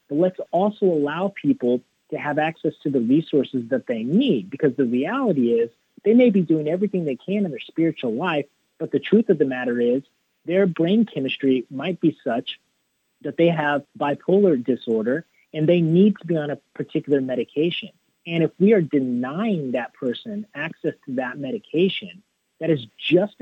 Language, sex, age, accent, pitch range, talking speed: English, male, 30-49, American, 130-190 Hz, 180 wpm